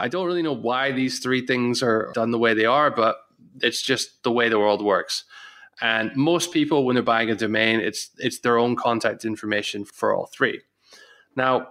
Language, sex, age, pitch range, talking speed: English, male, 20-39, 105-125 Hz, 205 wpm